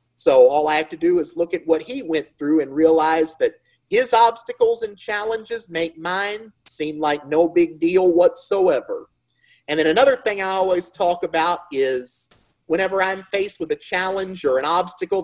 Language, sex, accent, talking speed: English, male, American, 180 wpm